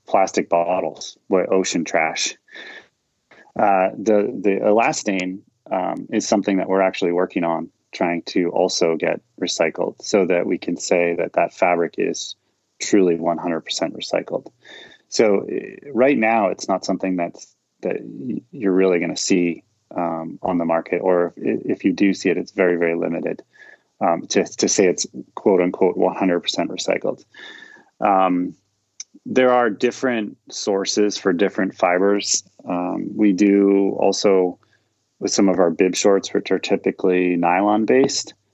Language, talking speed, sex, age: English, 145 wpm, male, 30-49